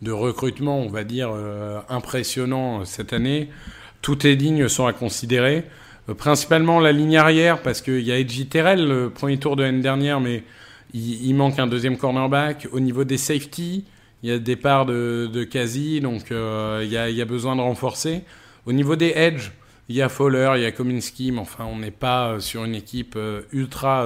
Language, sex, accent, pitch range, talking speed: French, male, French, 120-145 Hz, 205 wpm